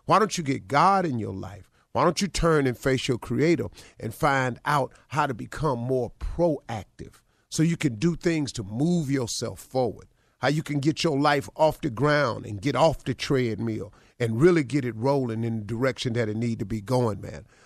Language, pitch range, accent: English, 105-160 Hz, American